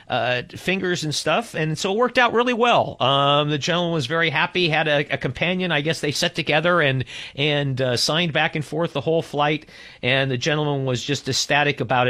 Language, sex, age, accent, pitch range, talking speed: English, male, 50-69, American, 125-155 Hz, 215 wpm